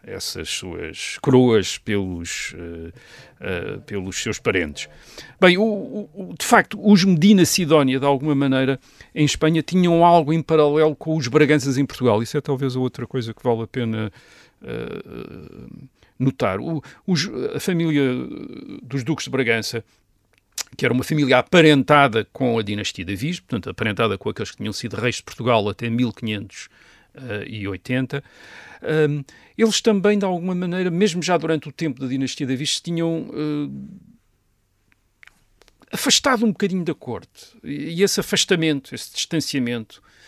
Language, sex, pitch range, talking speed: Portuguese, male, 120-170 Hz, 145 wpm